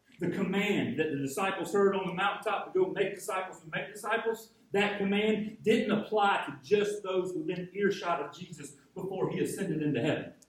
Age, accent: 40-59, American